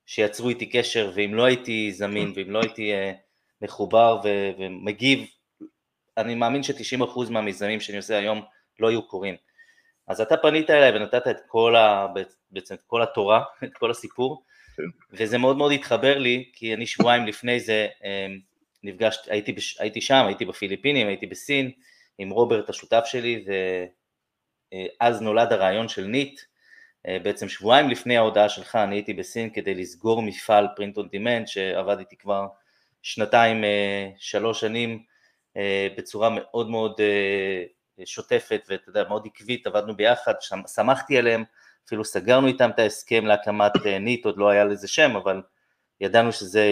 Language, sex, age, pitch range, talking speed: Hebrew, male, 20-39, 100-125 Hz, 150 wpm